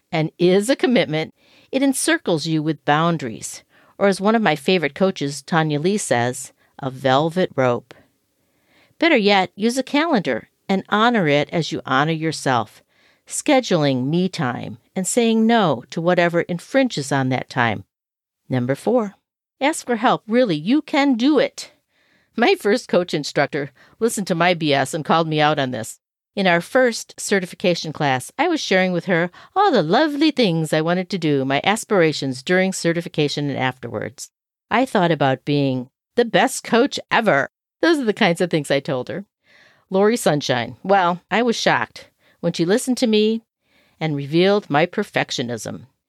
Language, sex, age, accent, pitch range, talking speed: English, female, 50-69, American, 145-220 Hz, 165 wpm